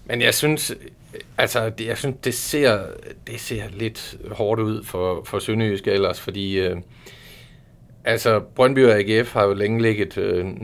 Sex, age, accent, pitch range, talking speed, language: male, 40-59, native, 95-115 Hz, 160 wpm, Danish